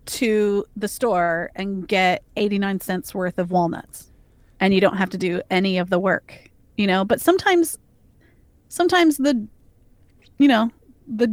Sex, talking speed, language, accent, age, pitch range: female, 155 wpm, English, American, 30-49, 190-230 Hz